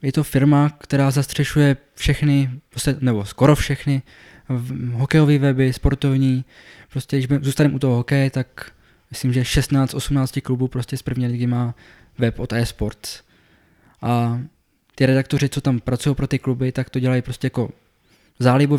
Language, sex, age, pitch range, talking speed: Czech, male, 20-39, 120-135 Hz, 145 wpm